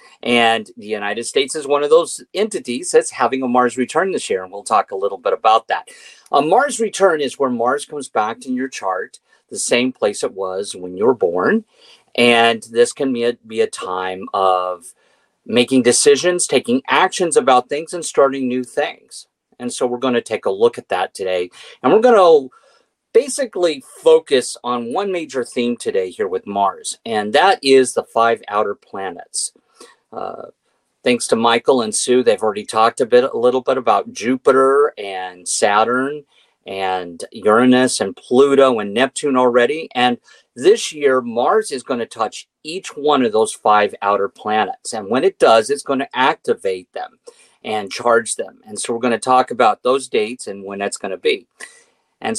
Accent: American